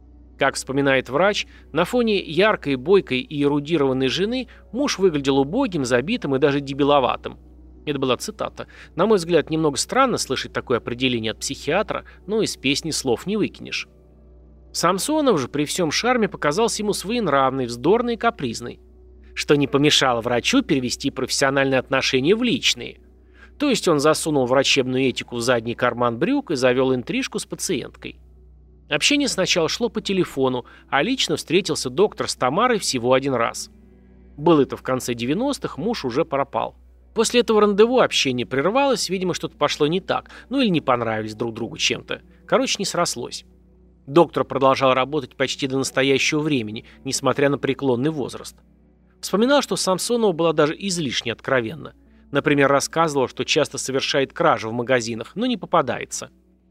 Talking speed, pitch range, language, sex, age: 150 wpm, 120-185 Hz, Russian, male, 30-49